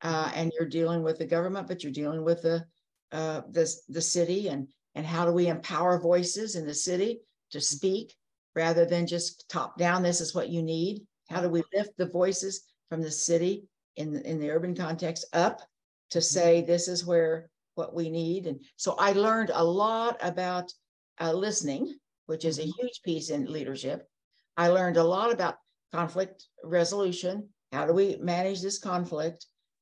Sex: female